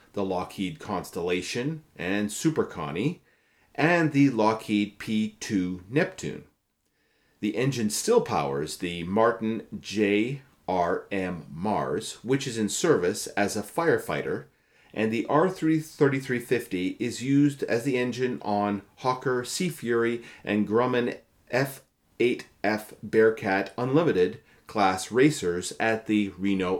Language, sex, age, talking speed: English, male, 40-59, 105 wpm